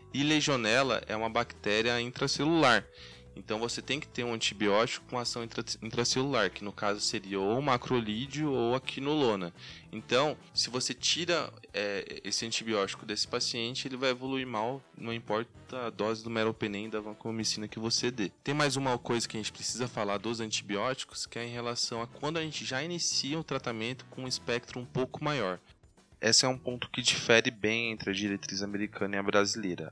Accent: Brazilian